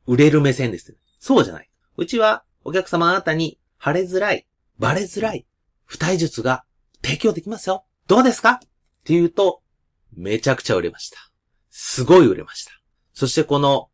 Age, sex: 30-49, male